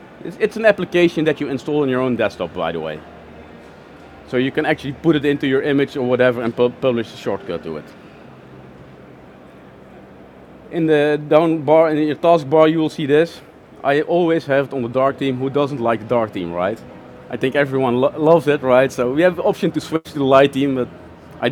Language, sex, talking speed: English, male, 215 wpm